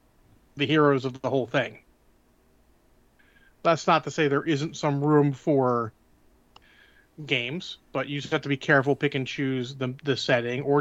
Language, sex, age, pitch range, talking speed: English, male, 30-49, 125-145 Hz, 165 wpm